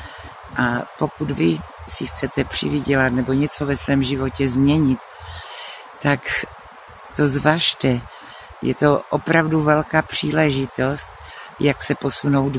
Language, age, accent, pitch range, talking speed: Czech, 60-79, native, 130-150 Hz, 110 wpm